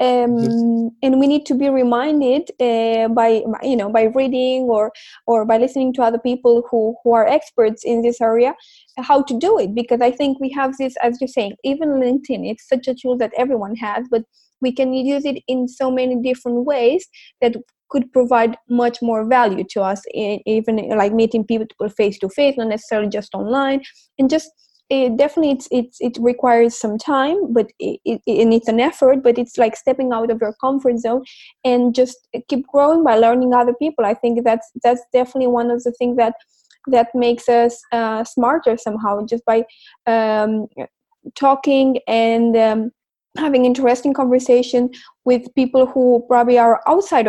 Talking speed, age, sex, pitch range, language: 180 wpm, 20-39, female, 230-265 Hz, English